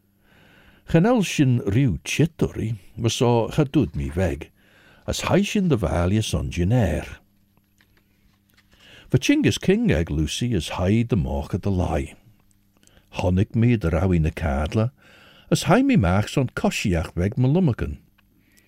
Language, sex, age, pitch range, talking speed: English, male, 60-79, 90-120 Hz, 140 wpm